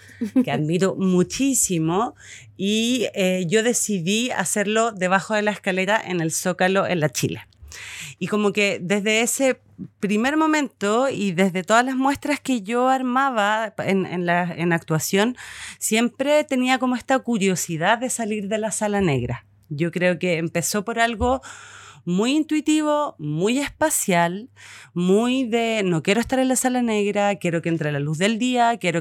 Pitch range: 165-225 Hz